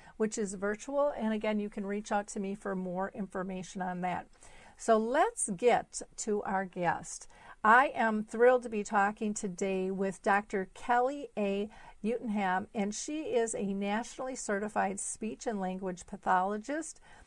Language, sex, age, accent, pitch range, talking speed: English, female, 50-69, American, 195-235 Hz, 155 wpm